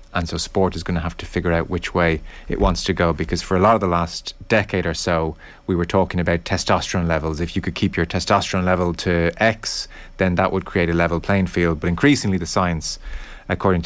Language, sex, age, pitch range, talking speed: English, male, 30-49, 85-95 Hz, 235 wpm